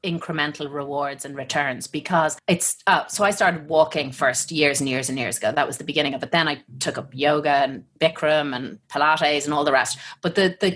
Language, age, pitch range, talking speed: English, 30-49, 145-180 Hz, 225 wpm